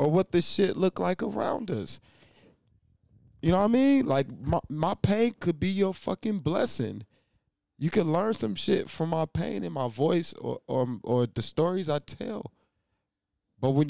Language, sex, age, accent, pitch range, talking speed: English, male, 20-39, American, 125-185 Hz, 180 wpm